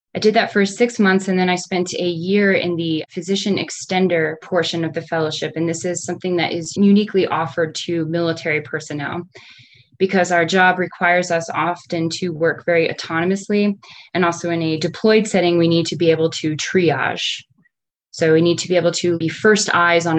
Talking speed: 195 wpm